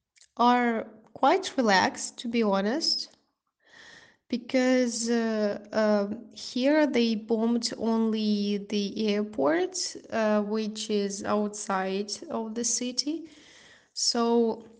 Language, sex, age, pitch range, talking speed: English, female, 20-39, 210-245 Hz, 95 wpm